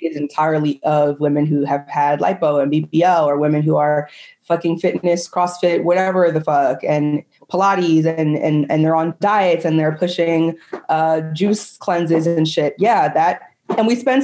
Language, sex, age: English, female, 20-39